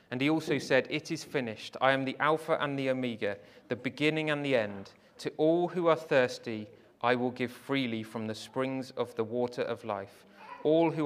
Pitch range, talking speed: 130-165 Hz, 205 wpm